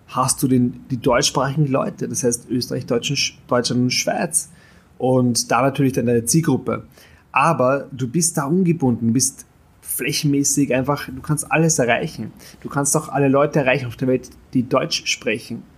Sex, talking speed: male, 155 wpm